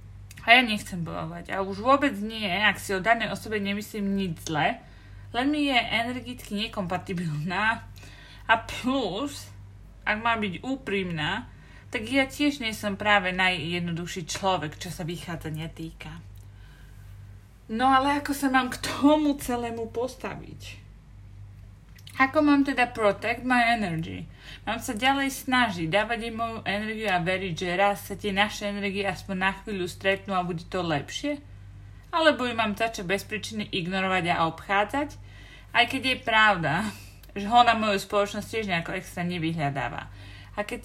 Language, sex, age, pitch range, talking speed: Slovak, female, 30-49, 160-235 Hz, 150 wpm